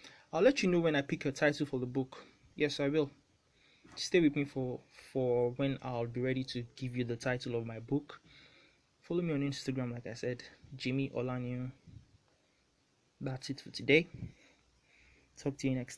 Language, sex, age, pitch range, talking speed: English, male, 20-39, 130-155 Hz, 185 wpm